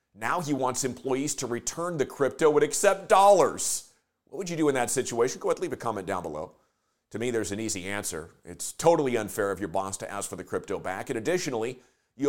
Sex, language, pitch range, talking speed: male, English, 130-175 Hz, 230 wpm